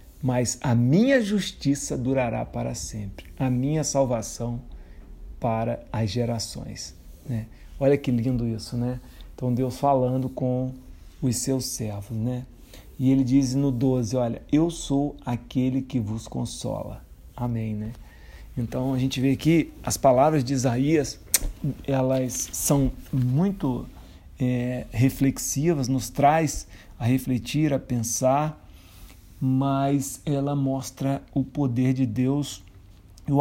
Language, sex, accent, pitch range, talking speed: Portuguese, male, Brazilian, 115-140 Hz, 120 wpm